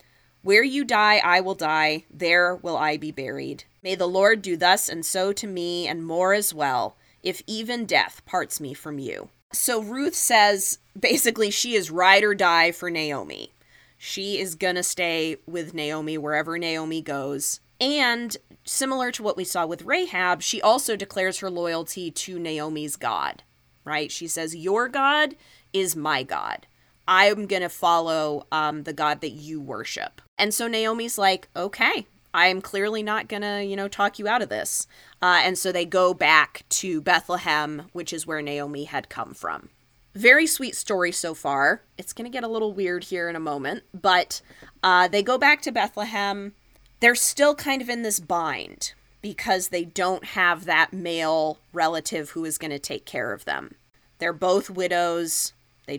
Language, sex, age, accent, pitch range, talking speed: English, female, 20-39, American, 160-205 Hz, 180 wpm